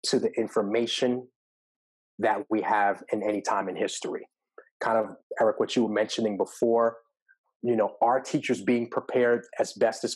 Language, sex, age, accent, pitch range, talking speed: English, male, 30-49, American, 115-145 Hz, 155 wpm